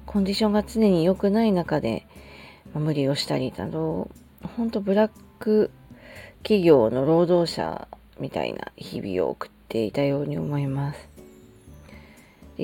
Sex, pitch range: female, 140-195 Hz